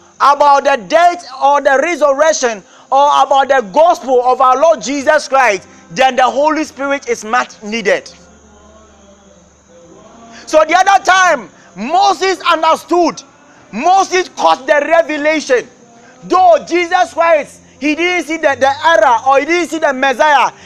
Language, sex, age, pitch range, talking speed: English, male, 30-49, 240-335 Hz, 135 wpm